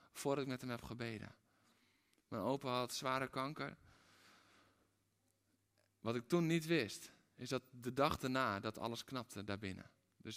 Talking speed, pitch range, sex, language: 150 wpm, 105-140 Hz, male, Dutch